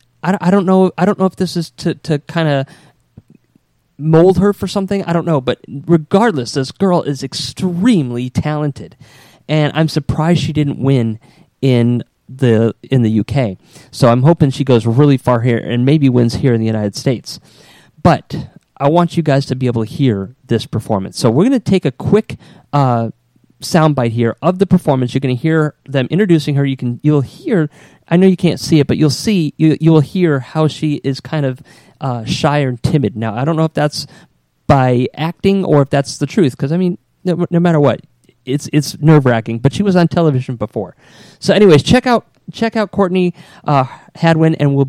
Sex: male